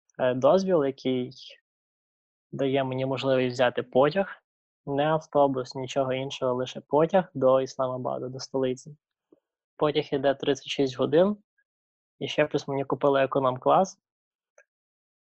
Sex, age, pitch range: male, 20-39, 130-150 Hz